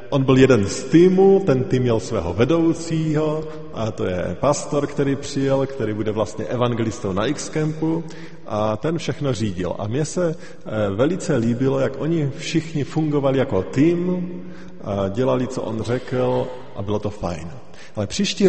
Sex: male